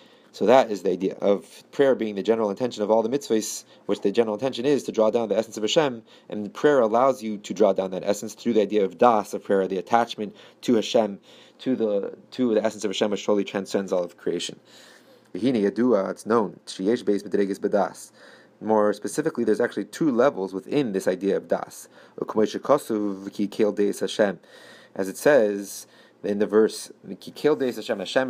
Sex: male